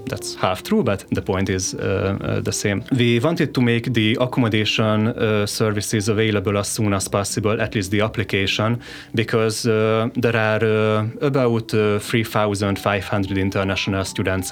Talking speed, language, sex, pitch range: 155 wpm, Hungarian, male, 100-120 Hz